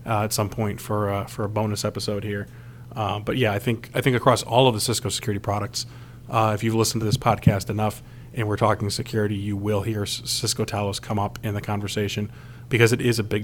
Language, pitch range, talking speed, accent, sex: English, 110-120 Hz, 230 wpm, American, male